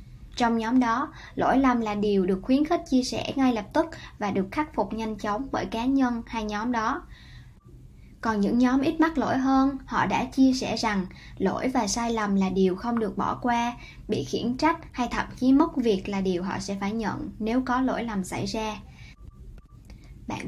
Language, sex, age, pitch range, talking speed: Vietnamese, male, 10-29, 220-265 Hz, 205 wpm